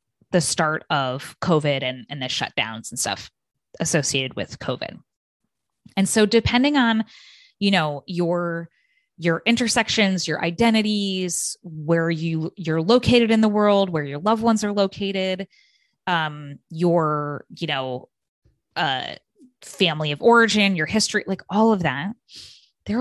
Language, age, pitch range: English, 20-39, 155-205 Hz